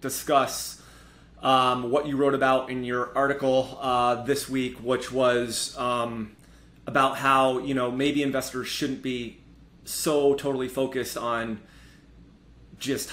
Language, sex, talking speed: English, male, 130 wpm